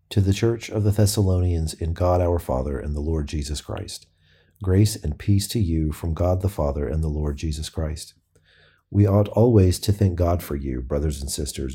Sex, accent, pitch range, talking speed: male, American, 80-100 Hz, 205 wpm